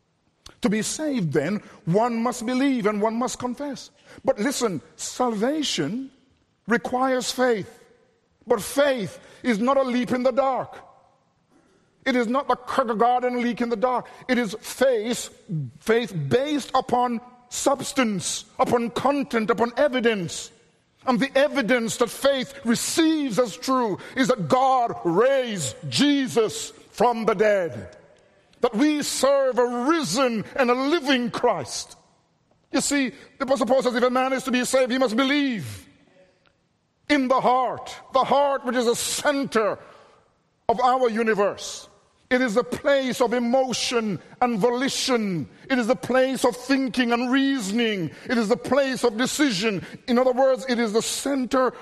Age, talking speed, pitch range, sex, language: 50-69, 145 wpm, 225-265 Hz, male, English